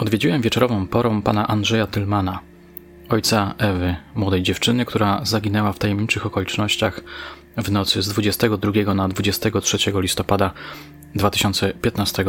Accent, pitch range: native, 95-115 Hz